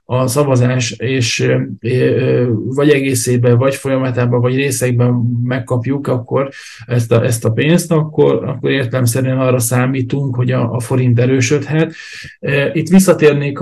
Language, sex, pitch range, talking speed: Hungarian, male, 125-140 Hz, 125 wpm